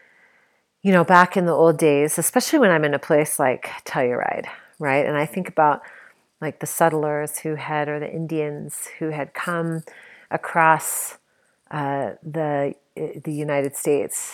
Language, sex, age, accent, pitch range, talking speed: English, female, 40-59, American, 150-195 Hz, 155 wpm